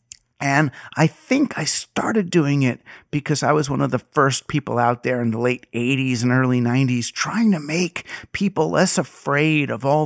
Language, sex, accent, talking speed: English, male, American, 190 wpm